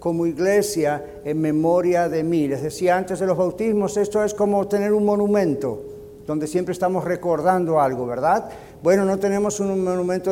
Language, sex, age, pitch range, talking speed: Spanish, male, 50-69, 160-205 Hz, 170 wpm